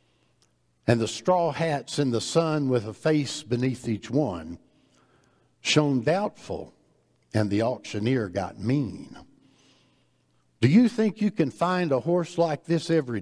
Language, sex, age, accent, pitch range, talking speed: English, male, 60-79, American, 105-160 Hz, 140 wpm